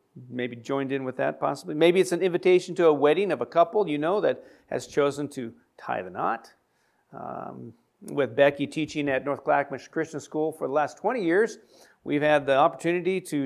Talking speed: 195 wpm